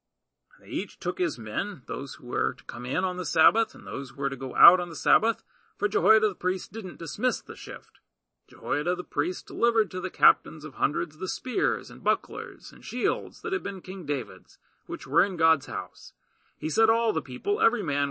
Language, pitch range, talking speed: English, 160-245 Hz, 210 wpm